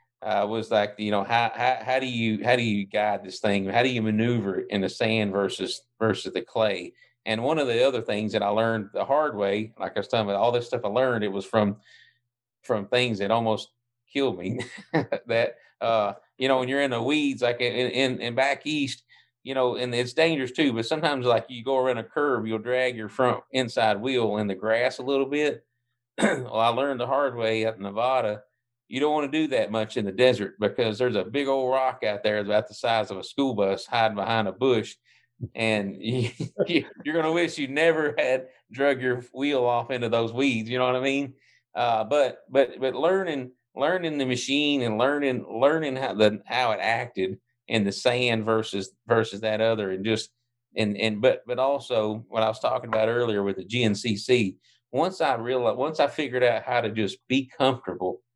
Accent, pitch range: American, 110-130 Hz